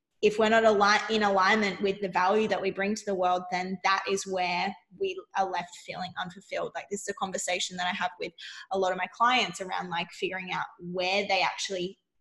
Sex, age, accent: female, 10-29, Australian